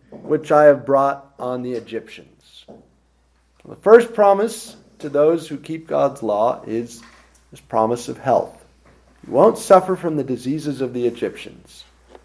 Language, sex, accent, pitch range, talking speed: English, male, American, 120-160 Hz, 145 wpm